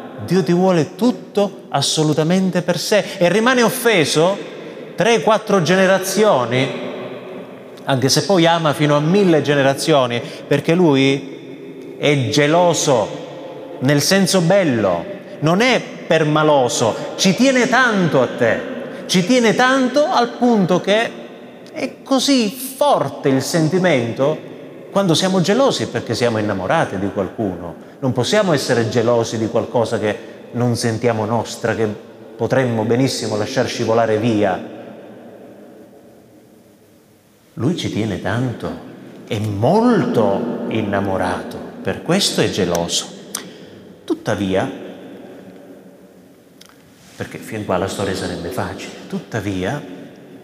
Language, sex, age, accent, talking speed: Italian, male, 30-49, native, 105 wpm